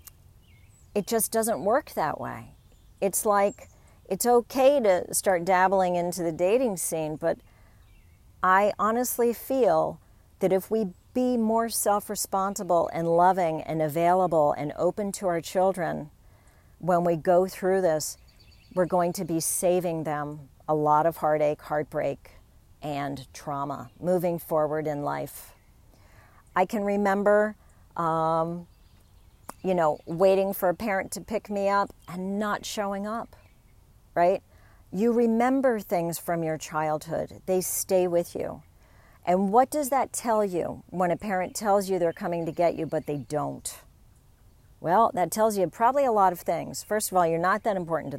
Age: 50-69